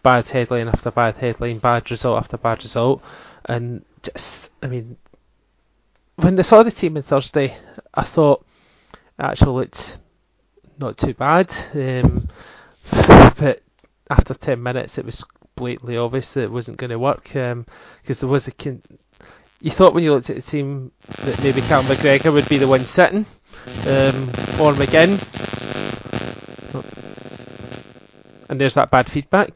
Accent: British